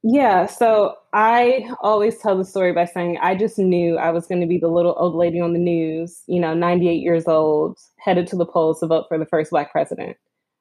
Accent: American